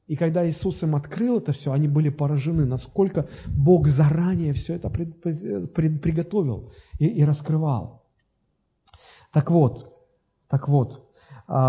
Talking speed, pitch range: 110 wpm, 125-165 Hz